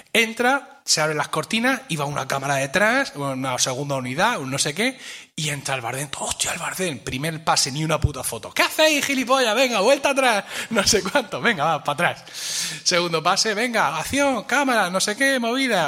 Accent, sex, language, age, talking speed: Spanish, male, Spanish, 30-49, 195 wpm